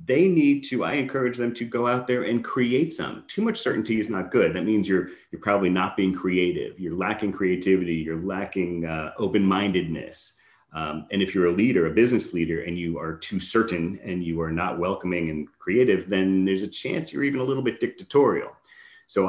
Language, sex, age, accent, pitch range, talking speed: English, male, 30-49, American, 90-115 Hz, 205 wpm